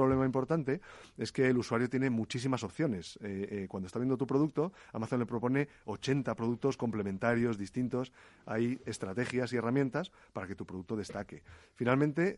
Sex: male